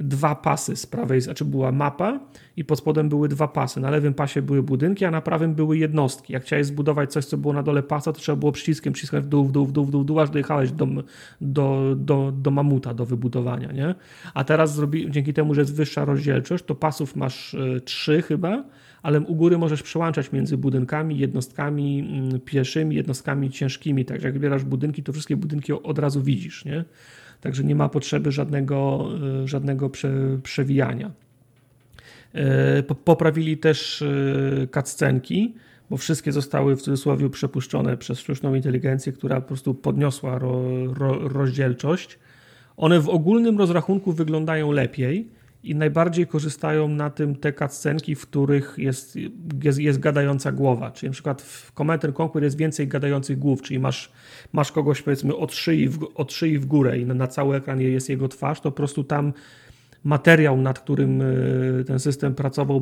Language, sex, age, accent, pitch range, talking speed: Polish, male, 30-49, native, 135-150 Hz, 160 wpm